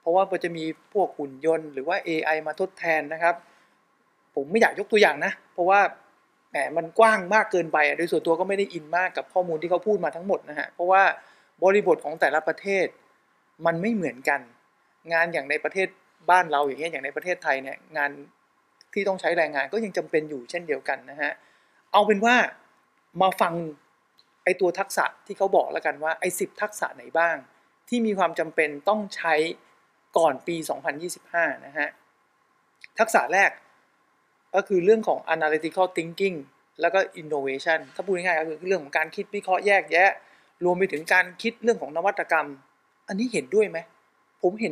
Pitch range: 165-215 Hz